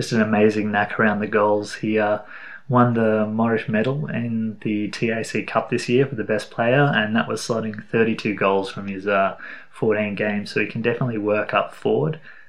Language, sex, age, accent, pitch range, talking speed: English, male, 20-39, Australian, 105-125 Hz, 190 wpm